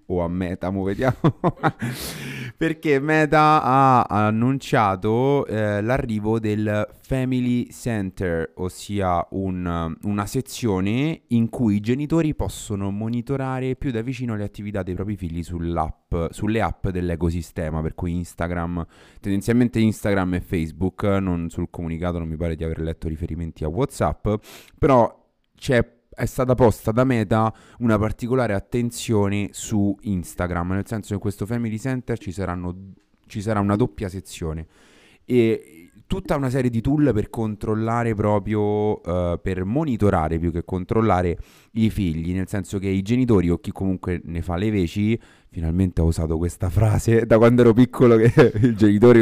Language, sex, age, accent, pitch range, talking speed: Italian, male, 30-49, native, 90-120 Hz, 150 wpm